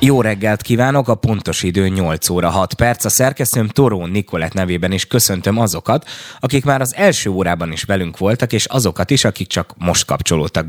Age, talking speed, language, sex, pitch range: 20-39, 185 wpm, Hungarian, male, 85-115 Hz